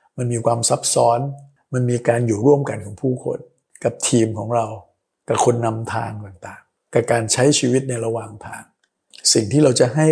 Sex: male